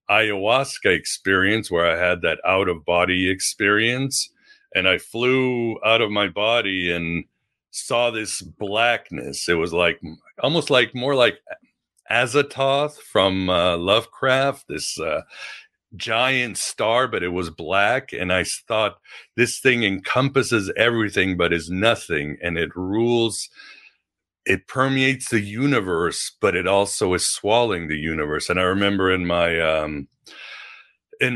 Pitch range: 85-115 Hz